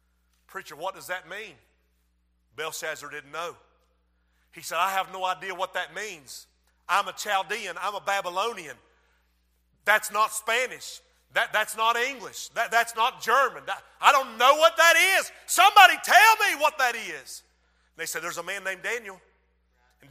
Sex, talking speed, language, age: male, 160 wpm, English, 40-59